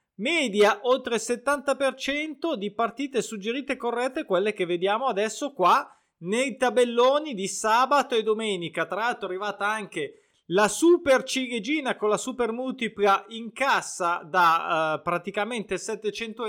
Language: Italian